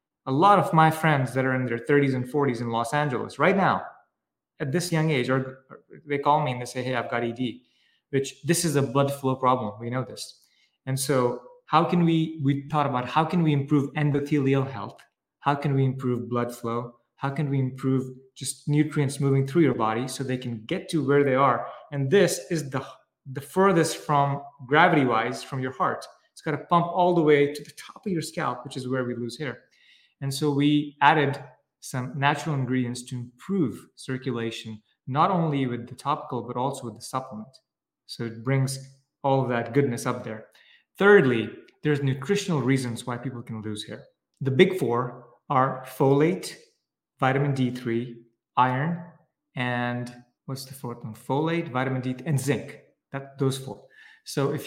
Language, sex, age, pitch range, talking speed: English, male, 20-39, 125-150 Hz, 190 wpm